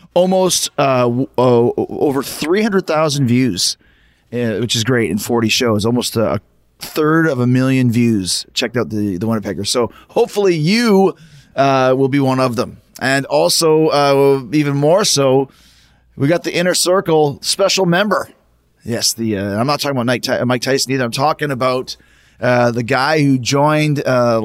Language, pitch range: English, 120-150 Hz